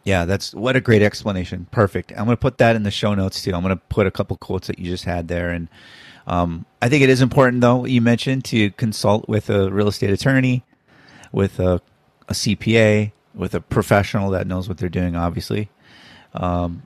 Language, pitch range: English, 95-120 Hz